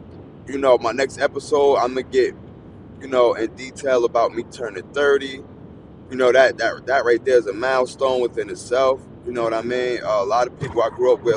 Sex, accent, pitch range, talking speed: male, American, 115-140 Hz, 225 wpm